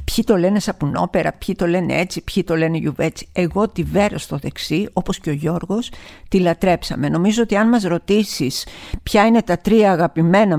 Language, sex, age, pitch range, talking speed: Greek, female, 50-69, 170-215 Hz, 185 wpm